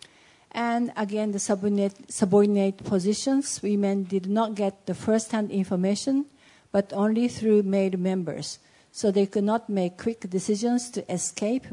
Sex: female